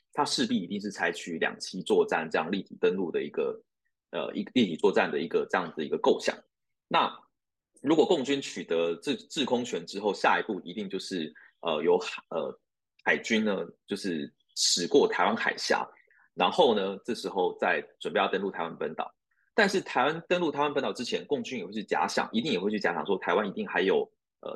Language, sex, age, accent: Chinese, male, 30-49, native